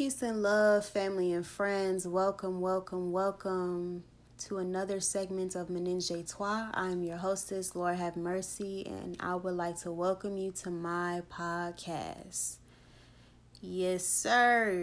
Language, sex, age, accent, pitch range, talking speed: English, female, 20-39, American, 170-200 Hz, 140 wpm